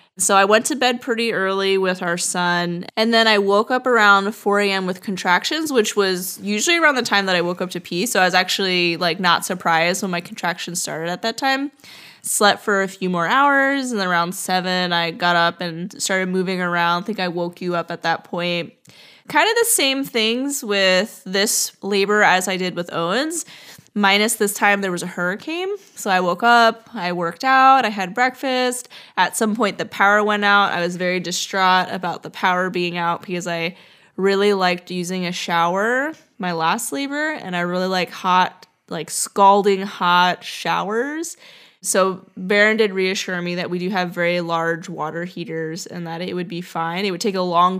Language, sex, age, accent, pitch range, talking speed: English, female, 20-39, American, 175-220 Hz, 200 wpm